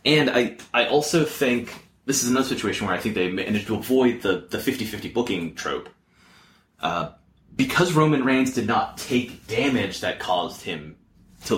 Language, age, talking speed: English, 30-49, 170 wpm